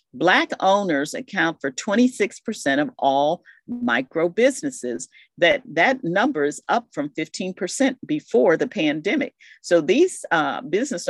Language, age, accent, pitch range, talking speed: English, 50-69, American, 155-255 Hz, 125 wpm